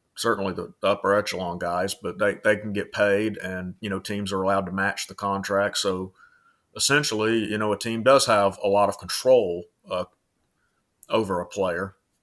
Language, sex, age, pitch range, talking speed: English, male, 30-49, 95-115 Hz, 180 wpm